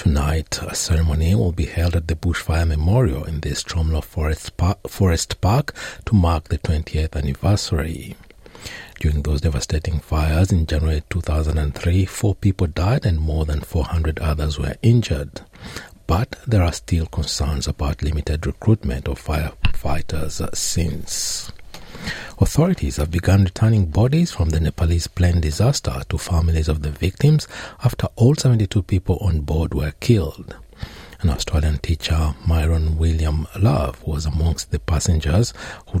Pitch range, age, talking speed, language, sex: 75-95 Hz, 60-79, 135 wpm, English, male